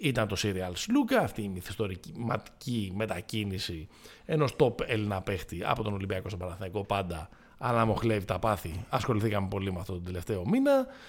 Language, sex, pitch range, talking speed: Greek, male, 100-135 Hz, 160 wpm